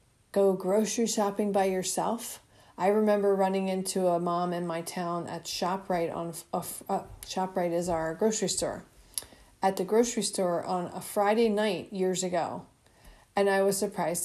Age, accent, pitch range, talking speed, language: 40-59, American, 185-215 Hz, 165 wpm, English